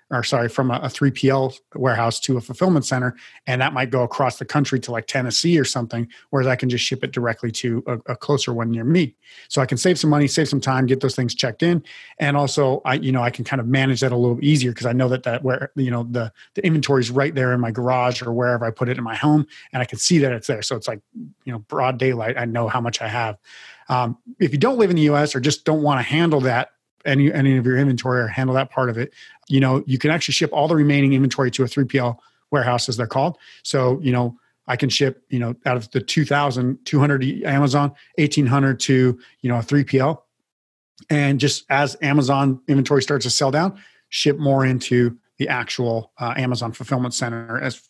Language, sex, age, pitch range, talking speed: English, male, 30-49, 125-145 Hz, 240 wpm